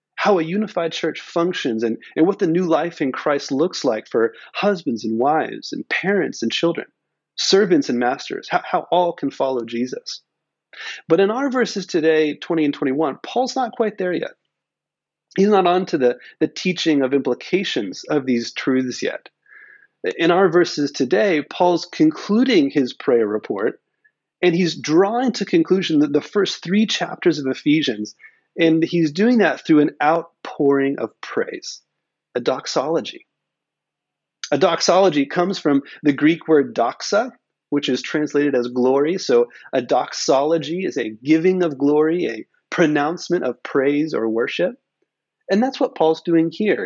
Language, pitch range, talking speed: English, 145-205 Hz, 155 wpm